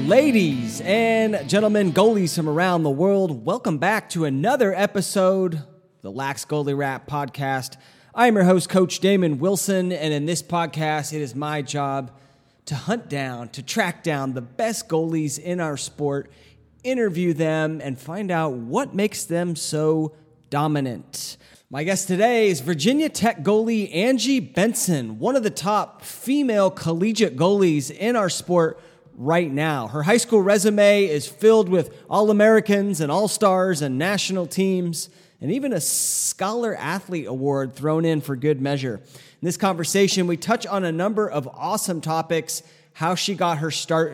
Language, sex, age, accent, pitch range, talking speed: English, male, 30-49, American, 150-200 Hz, 155 wpm